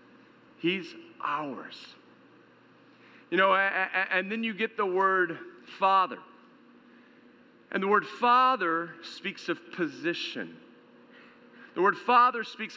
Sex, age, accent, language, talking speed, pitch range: male, 50-69, American, English, 105 wpm, 205-250 Hz